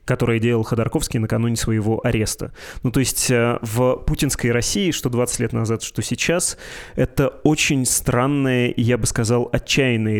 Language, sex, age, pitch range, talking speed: Russian, male, 20-39, 115-135 Hz, 145 wpm